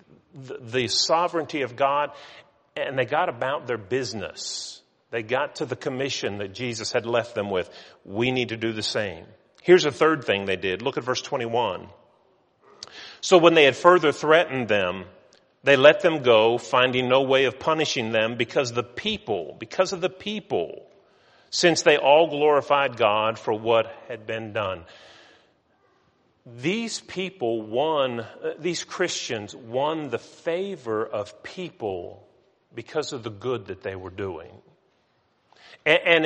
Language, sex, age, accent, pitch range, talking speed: English, male, 40-59, American, 115-170 Hz, 150 wpm